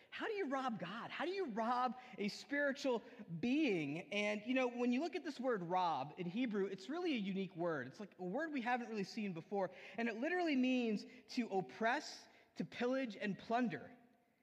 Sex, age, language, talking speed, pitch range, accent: male, 20-39, English, 200 wpm, 195-250 Hz, American